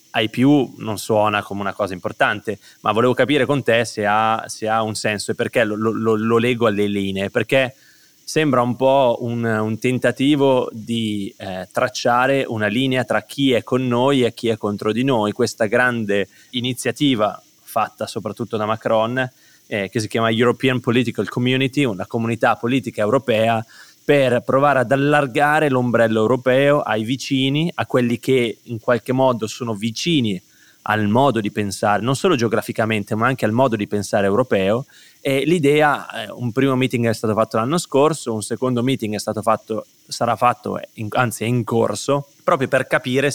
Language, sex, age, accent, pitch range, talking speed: Italian, male, 20-39, native, 110-130 Hz, 165 wpm